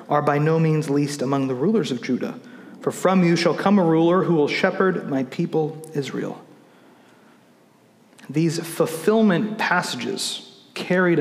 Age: 40-59